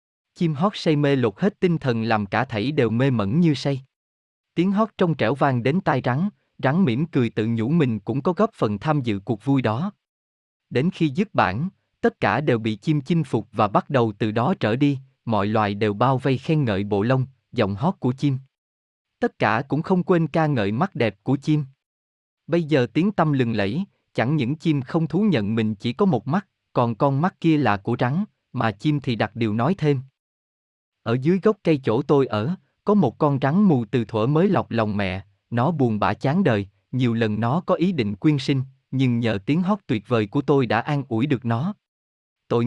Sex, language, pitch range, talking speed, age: male, Vietnamese, 110-160 Hz, 220 wpm, 20-39